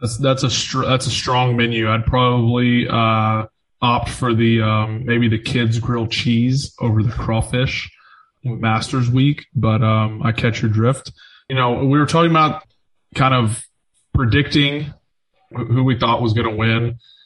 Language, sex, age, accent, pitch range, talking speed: English, male, 20-39, American, 115-135 Hz, 170 wpm